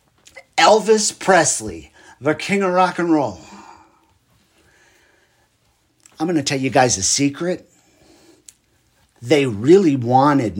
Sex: male